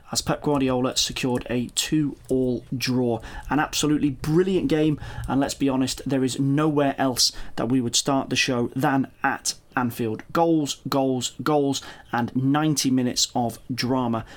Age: 30-49